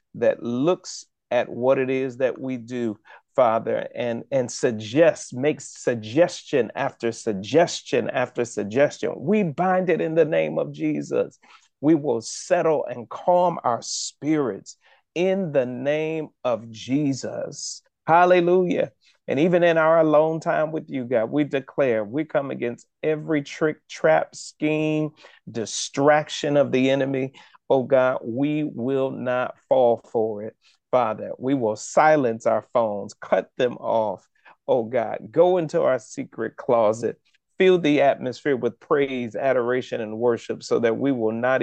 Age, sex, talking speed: 40-59, male, 145 wpm